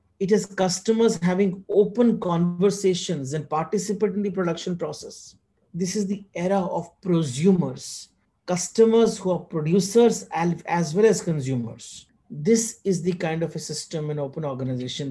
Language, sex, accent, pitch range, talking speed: English, male, Indian, 150-195 Hz, 145 wpm